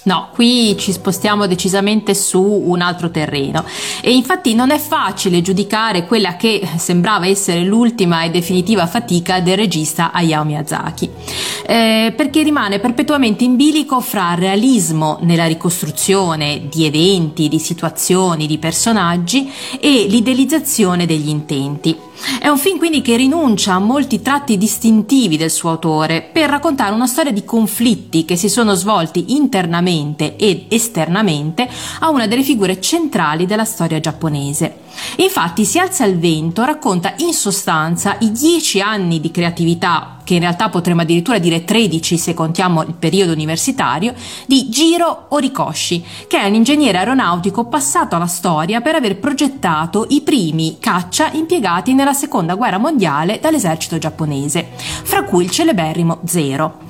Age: 30-49